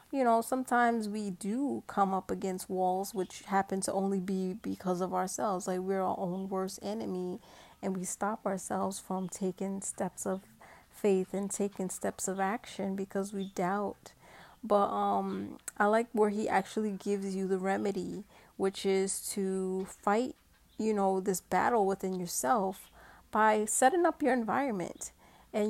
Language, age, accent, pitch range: English, 30-49, American, 190-215 Hz